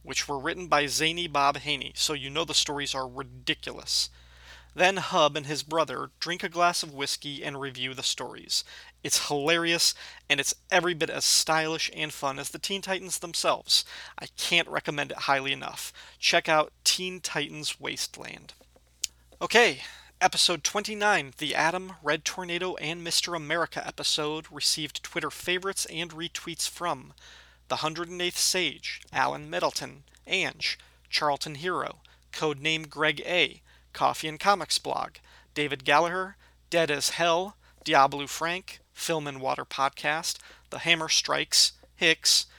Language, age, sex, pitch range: English, 30-49, male, 140-175 Hz